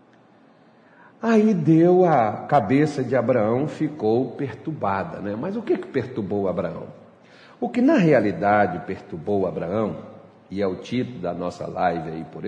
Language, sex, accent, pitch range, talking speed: Portuguese, male, Brazilian, 110-160 Hz, 140 wpm